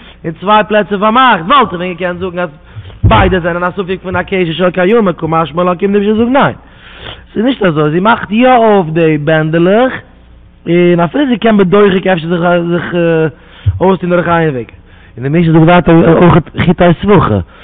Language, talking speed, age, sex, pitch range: English, 240 wpm, 20-39, male, 150-180 Hz